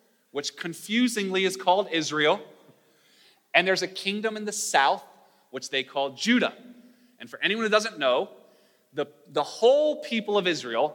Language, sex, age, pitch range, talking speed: English, male, 30-49, 150-235 Hz, 155 wpm